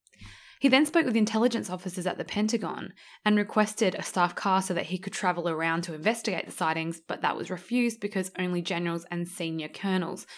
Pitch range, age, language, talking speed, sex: 165-200 Hz, 20-39, English, 195 wpm, female